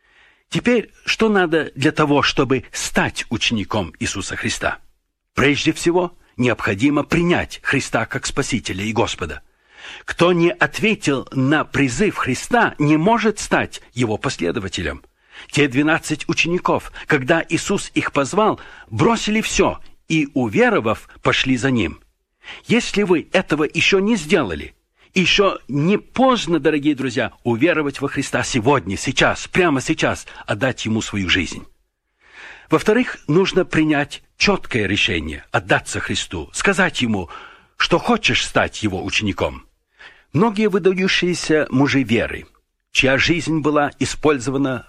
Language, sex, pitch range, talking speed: Russian, male, 125-180 Hz, 120 wpm